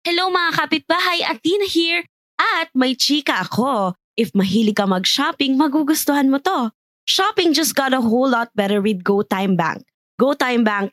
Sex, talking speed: female, 155 wpm